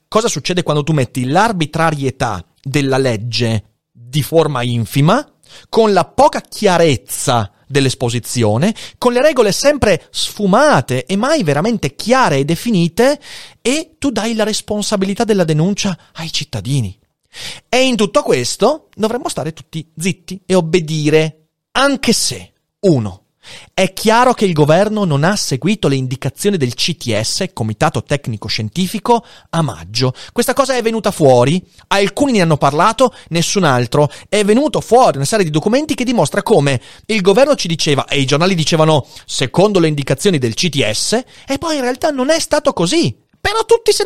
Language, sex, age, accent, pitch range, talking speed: Italian, male, 30-49, native, 140-225 Hz, 150 wpm